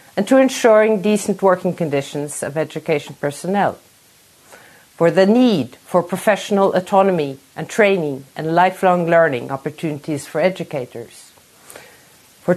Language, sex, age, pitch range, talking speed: English, female, 50-69, 155-195 Hz, 110 wpm